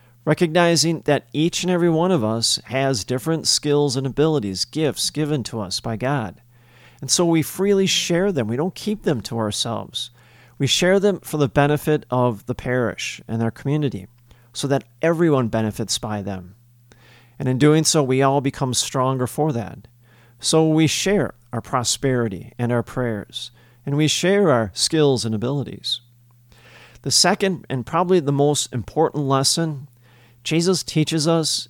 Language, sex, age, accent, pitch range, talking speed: English, male, 40-59, American, 120-155 Hz, 160 wpm